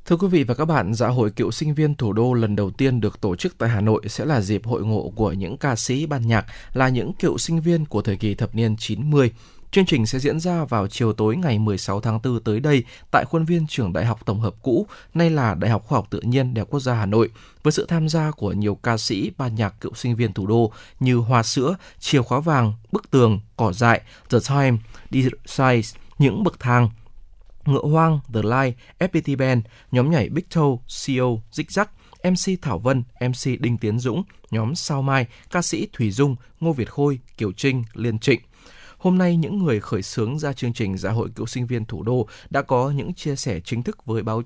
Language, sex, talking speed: Vietnamese, male, 230 wpm